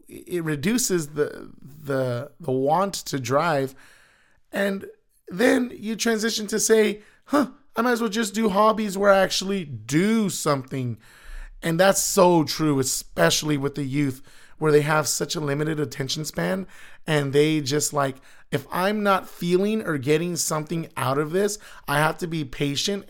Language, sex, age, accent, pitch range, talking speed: English, male, 30-49, American, 140-180 Hz, 160 wpm